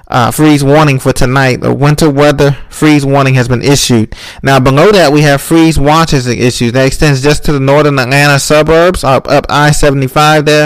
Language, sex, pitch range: English, male, 130-155 Hz